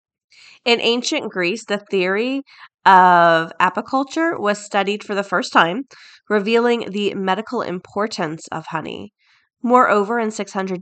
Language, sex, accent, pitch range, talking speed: English, female, American, 180-210 Hz, 120 wpm